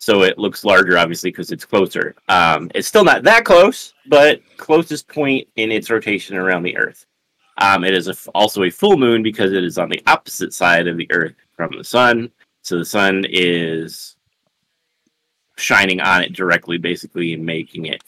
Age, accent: 30-49, American